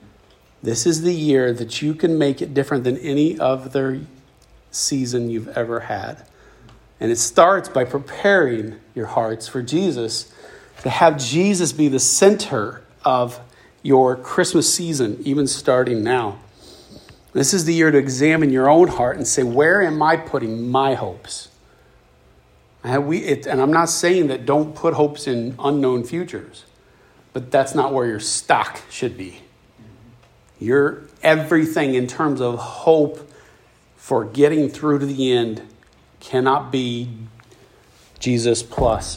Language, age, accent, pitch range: English, 40-59, American, 115-145 Hz